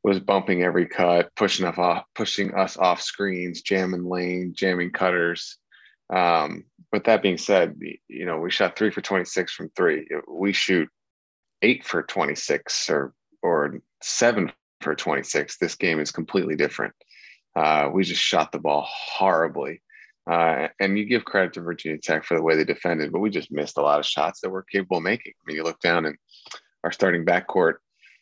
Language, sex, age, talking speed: English, male, 30-49, 185 wpm